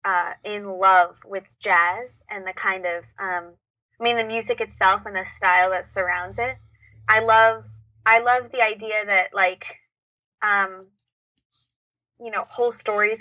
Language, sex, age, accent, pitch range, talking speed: English, female, 20-39, American, 180-215 Hz, 155 wpm